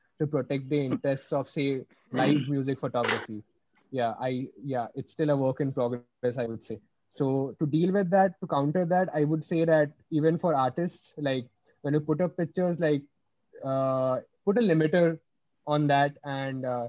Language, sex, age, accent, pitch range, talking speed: English, male, 20-39, Indian, 135-160 Hz, 180 wpm